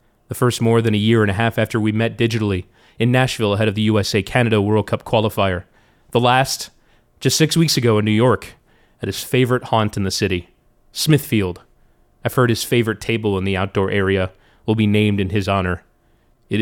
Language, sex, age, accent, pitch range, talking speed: English, male, 30-49, American, 105-130 Hz, 200 wpm